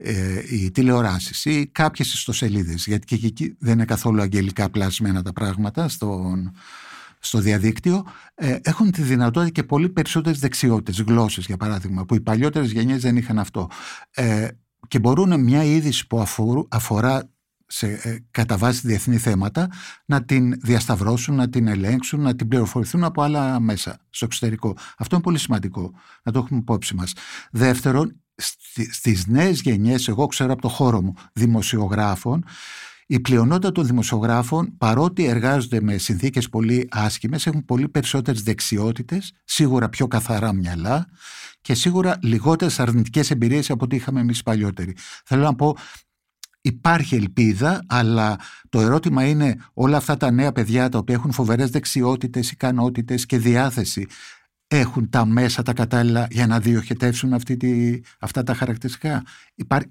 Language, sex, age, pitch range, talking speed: Greek, male, 60-79, 110-140 Hz, 150 wpm